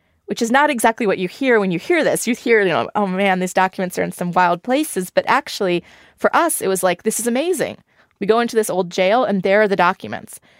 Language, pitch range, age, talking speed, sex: English, 170-210 Hz, 20-39, 255 wpm, female